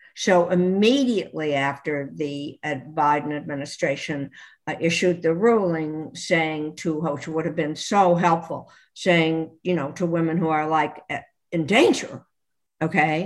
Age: 60-79